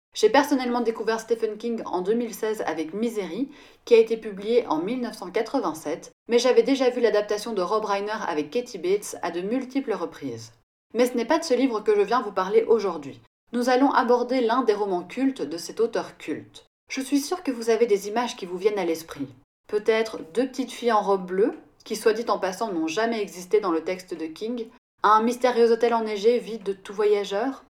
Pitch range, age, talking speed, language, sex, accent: 195-245 Hz, 30-49, 205 wpm, French, female, French